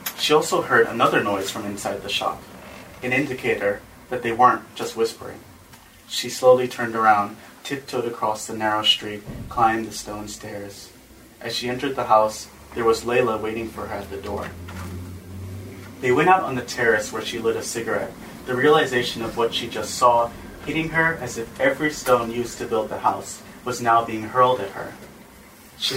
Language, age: English, 30-49